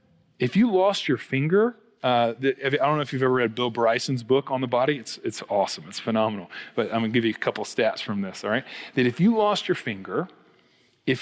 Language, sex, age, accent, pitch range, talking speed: English, male, 40-59, American, 120-150 Hz, 245 wpm